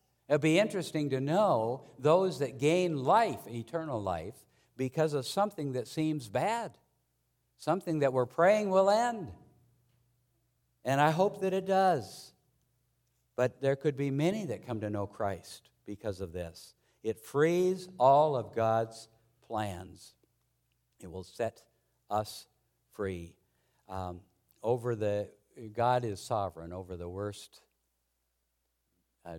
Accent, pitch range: American, 95-145 Hz